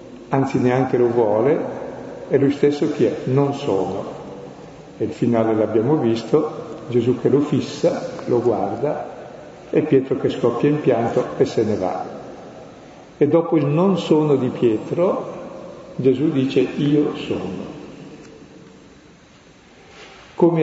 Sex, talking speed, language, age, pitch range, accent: male, 130 wpm, Italian, 50-69, 120-150 Hz, native